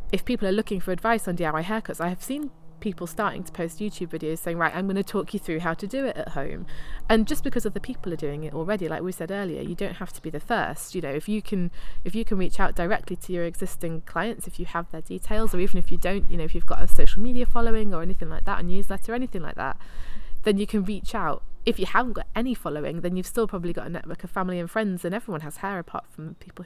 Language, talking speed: English, 280 wpm